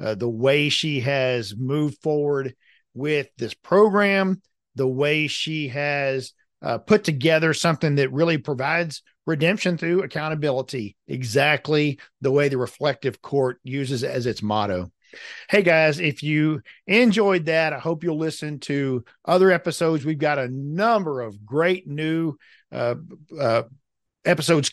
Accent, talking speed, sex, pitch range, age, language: American, 140 wpm, male, 135-170 Hz, 50-69, English